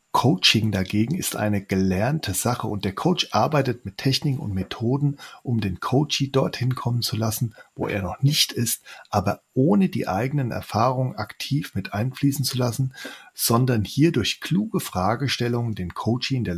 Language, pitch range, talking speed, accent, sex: German, 105-135 Hz, 165 wpm, German, male